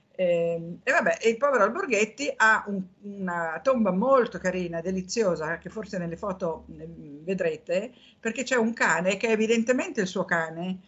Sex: female